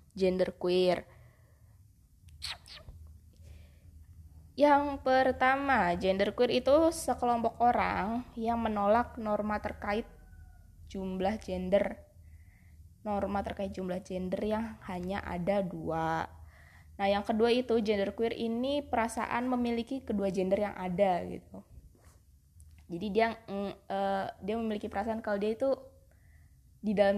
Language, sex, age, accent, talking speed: Indonesian, female, 20-39, native, 110 wpm